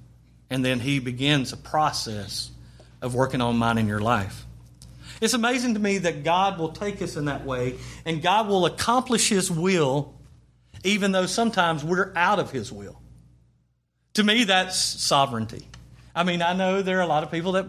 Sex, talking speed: male, 185 wpm